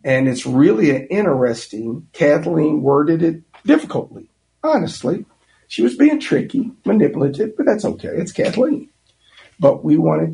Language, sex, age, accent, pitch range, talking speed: English, male, 50-69, American, 120-160 Hz, 135 wpm